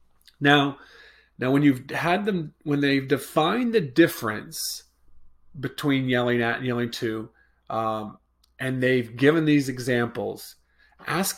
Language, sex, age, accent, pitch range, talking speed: English, male, 30-49, American, 115-150 Hz, 125 wpm